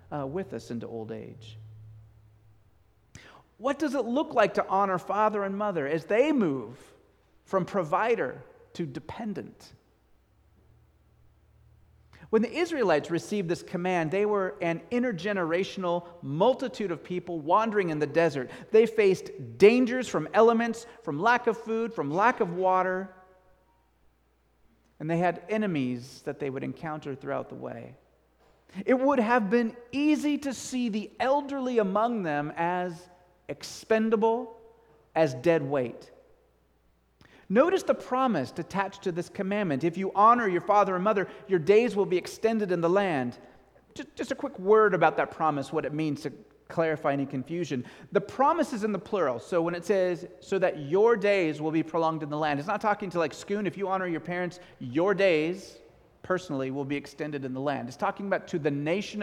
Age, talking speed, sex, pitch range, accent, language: 40-59, 165 wpm, male, 155-210 Hz, American, English